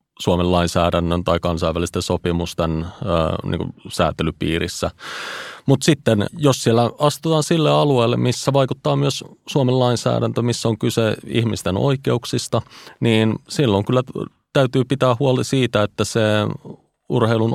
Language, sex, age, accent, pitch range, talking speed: Finnish, male, 30-49, native, 90-120 Hz, 115 wpm